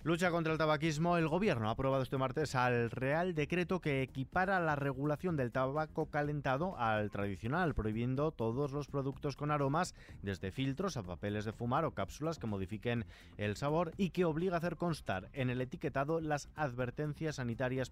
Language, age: Spanish, 30-49